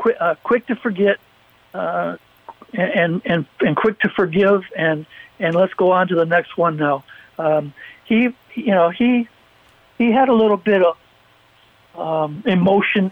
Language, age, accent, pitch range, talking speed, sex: English, 60-79, American, 160-195 Hz, 155 wpm, male